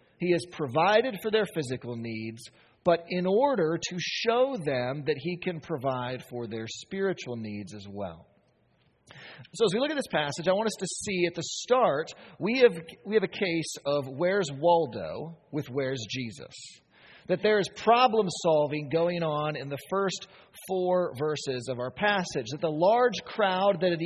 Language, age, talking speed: English, 40-59, 175 wpm